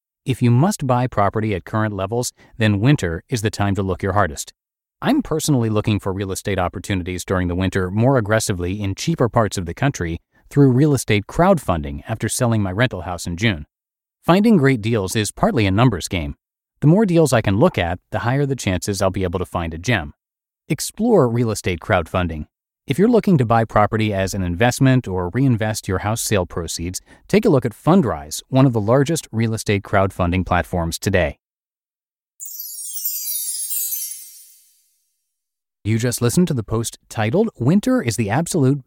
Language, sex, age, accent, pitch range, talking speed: English, male, 40-59, American, 95-130 Hz, 180 wpm